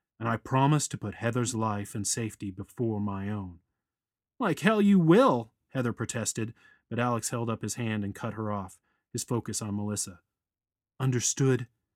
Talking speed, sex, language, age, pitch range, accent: 165 wpm, male, English, 30-49, 105-130 Hz, American